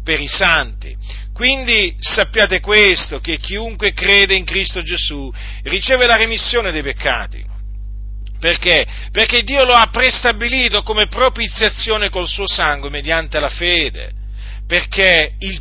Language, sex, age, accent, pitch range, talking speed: Italian, male, 40-59, native, 130-215 Hz, 125 wpm